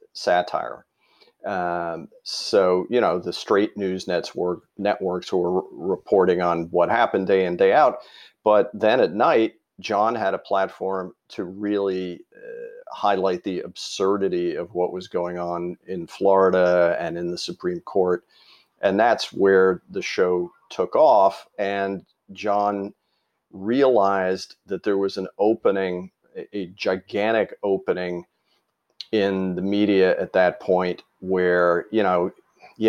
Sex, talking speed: male, 130 wpm